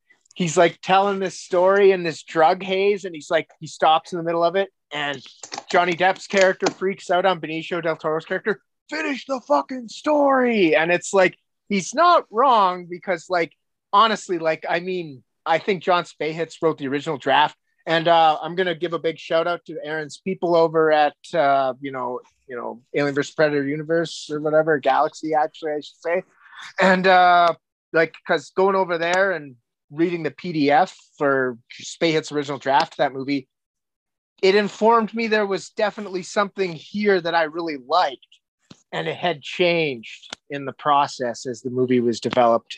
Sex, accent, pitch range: male, American, 145-185 Hz